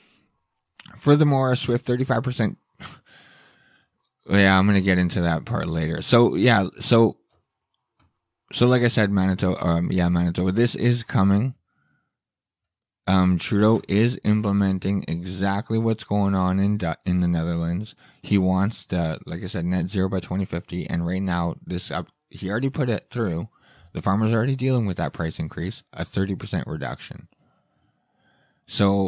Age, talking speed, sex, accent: 20-39, 155 wpm, male, American